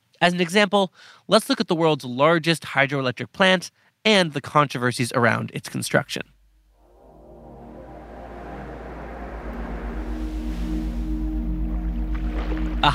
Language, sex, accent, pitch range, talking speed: English, male, American, 120-175 Hz, 85 wpm